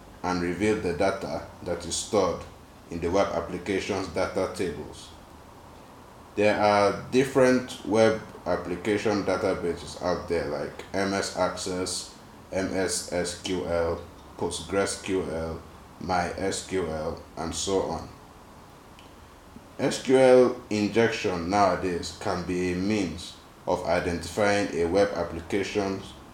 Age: 30-49